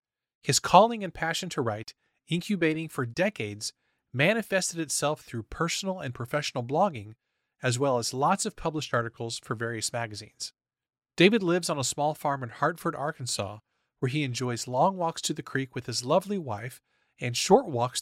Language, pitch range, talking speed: English, 125-170 Hz, 165 wpm